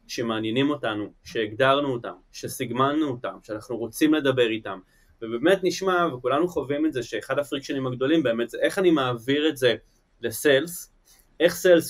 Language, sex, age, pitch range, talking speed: Hebrew, male, 20-39, 115-160 Hz, 145 wpm